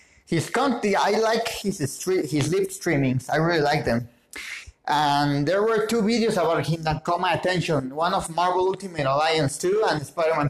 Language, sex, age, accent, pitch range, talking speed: English, male, 30-49, Mexican, 145-185 Hz, 175 wpm